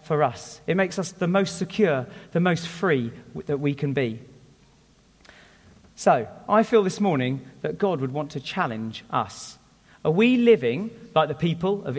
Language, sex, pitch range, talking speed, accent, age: English, male, 135-185 Hz, 175 wpm, British, 40-59